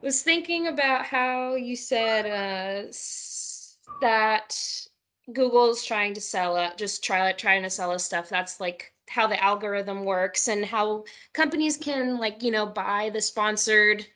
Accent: American